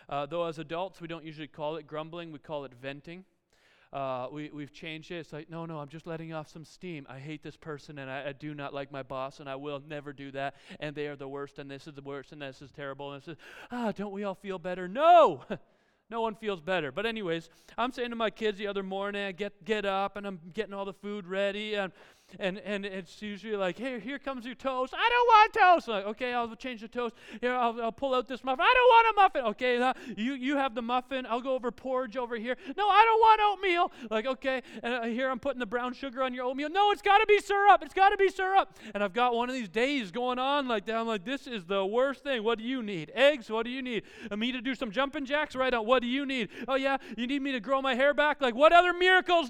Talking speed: 270 wpm